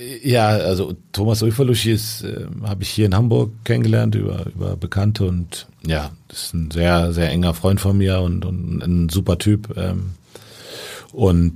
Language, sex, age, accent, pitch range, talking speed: German, male, 40-59, German, 90-105 Hz, 155 wpm